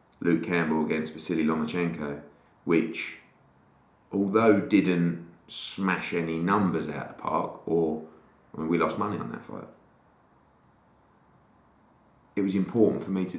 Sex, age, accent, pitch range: male, 30-49, British, 80-100 Hz